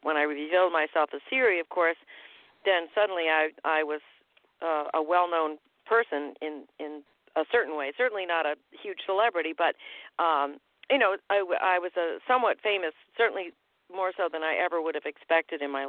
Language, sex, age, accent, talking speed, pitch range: English, female, 50-69, American, 180 wpm, 160-195 Hz